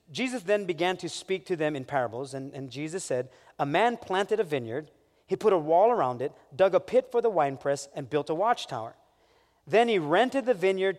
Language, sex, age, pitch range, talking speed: English, male, 30-49, 150-225 Hz, 215 wpm